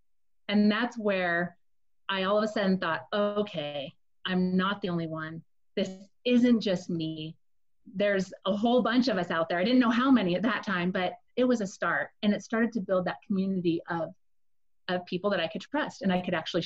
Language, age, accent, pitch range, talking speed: English, 30-49, American, 185-245 Hz, 210 wpm